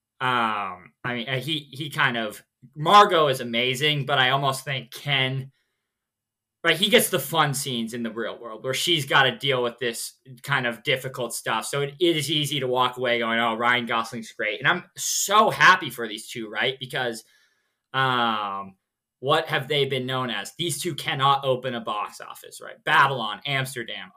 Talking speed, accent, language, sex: 185 wpm, American, English, male